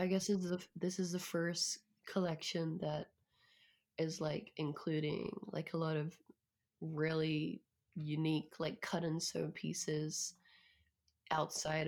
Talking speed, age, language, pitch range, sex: 115 wpm, 20-39, English, 150-185 Hz, female